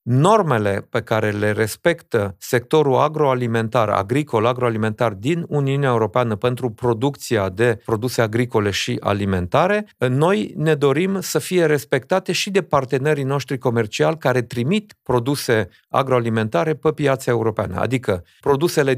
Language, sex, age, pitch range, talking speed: Romanian, male, 40-59, 110-145 Hz, 120 wpm